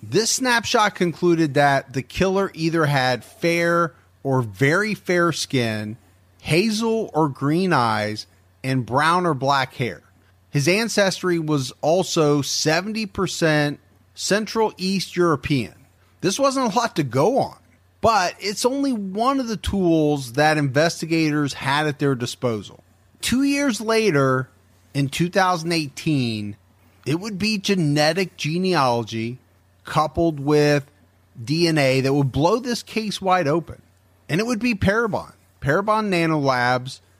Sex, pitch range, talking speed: male, 125-185 Hz, 125 wpm